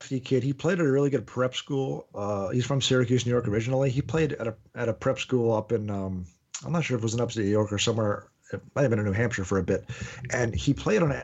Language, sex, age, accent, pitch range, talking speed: English, male, 40-59, American, 115-135 Hz, 290 wpm